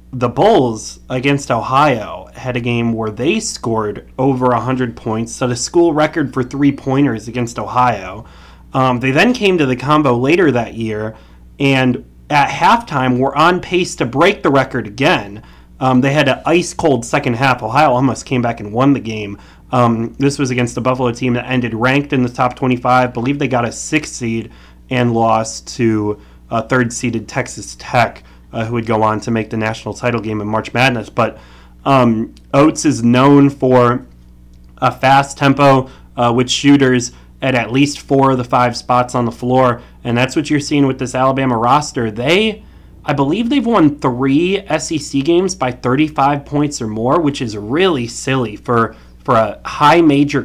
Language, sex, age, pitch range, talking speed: English, male, 30-49, 115-140 Hz, 180 wpm